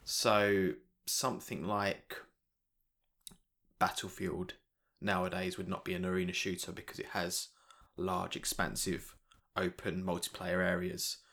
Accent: British